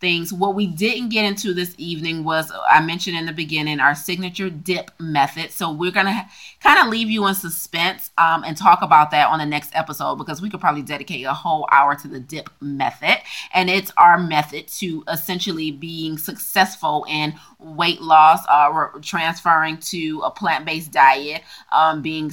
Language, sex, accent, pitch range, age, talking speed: English, female, American, 155-185 Hz, 30-49, 185 wpm